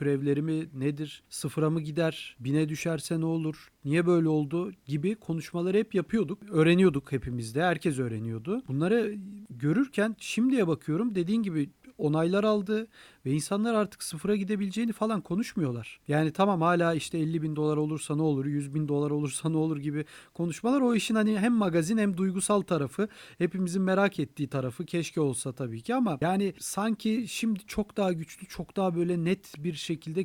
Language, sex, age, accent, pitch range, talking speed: Turkish, male, 40-59, native, 155-195 Hz, 165 wpm